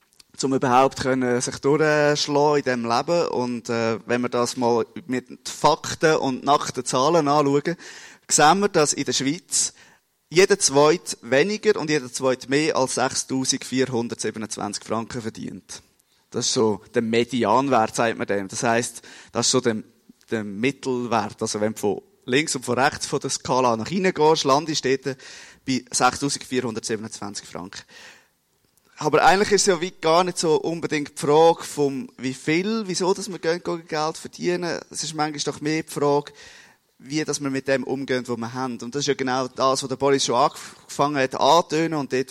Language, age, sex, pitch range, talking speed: German, 20-39, male, 120-155 Hz, 175 wpm